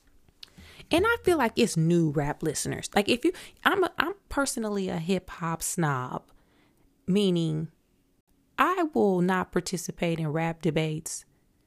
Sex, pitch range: female, 160-200 Hz